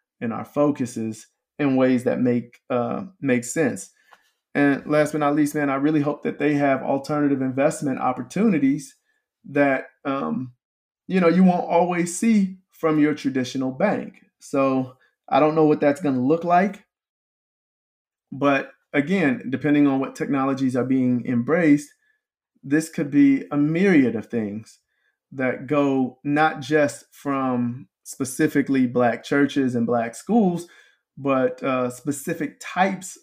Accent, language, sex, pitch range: American, English, male, 135-185 Hz